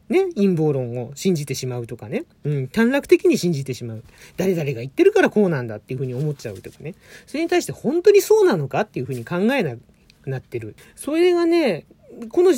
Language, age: Japanese, 40-59